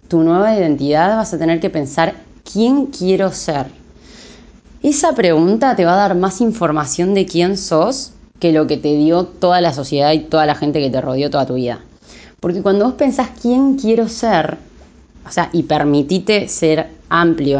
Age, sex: 20-39, female